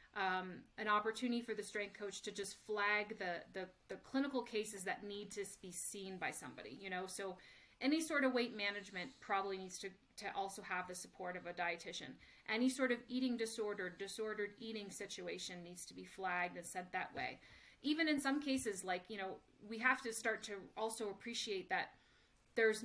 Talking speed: 190 wpm